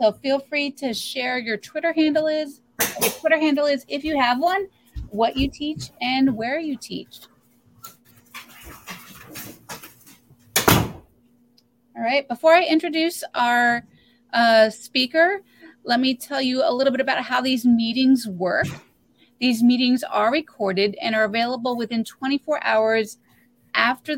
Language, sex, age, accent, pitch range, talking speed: English, female, 30-49, American, 220-275 Hz, 140 wpm